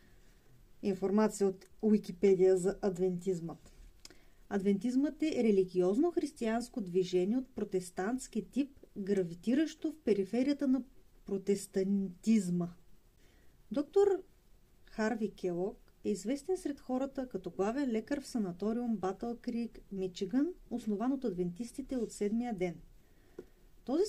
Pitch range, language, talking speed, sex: 195-260 Hz, Bulgarian, 95 wpm, female